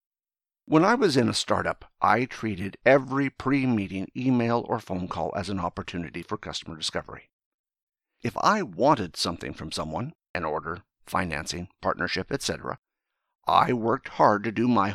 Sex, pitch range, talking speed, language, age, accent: male, 95-130 Hz, 150 wpm, English, 50-69, American